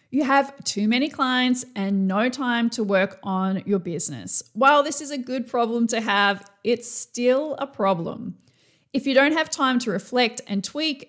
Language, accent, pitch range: English, Australian, 200-255 Hz